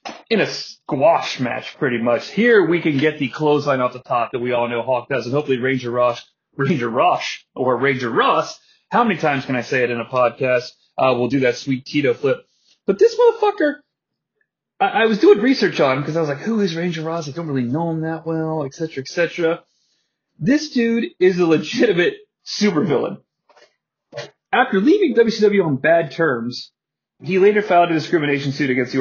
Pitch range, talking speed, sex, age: 130-195 Hz, 195 wpm, male, 30-49